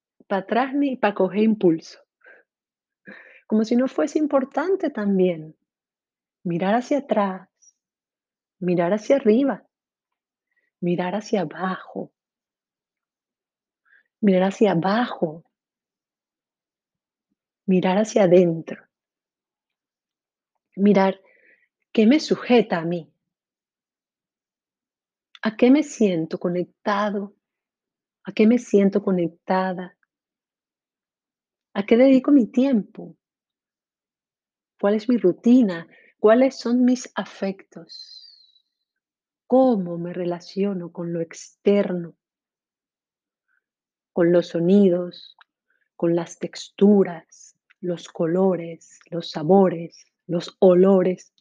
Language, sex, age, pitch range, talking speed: Spanish, female, 40-59, 180-245 Hz, 85 wpm